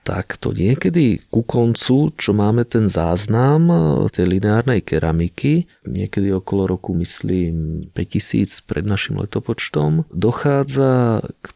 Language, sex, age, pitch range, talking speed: Slovak, male, 30-49, 100-120 Hz, 115 wpm